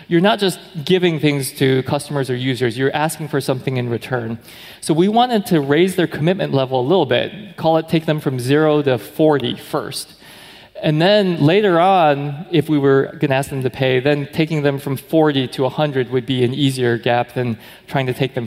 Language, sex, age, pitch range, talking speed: English, male, 20-39, 130-165 Hz, 210 wpm